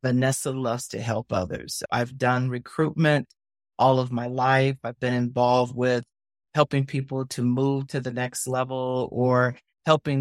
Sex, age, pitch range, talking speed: male, 40-59, 125-155 Hz, 155 wpm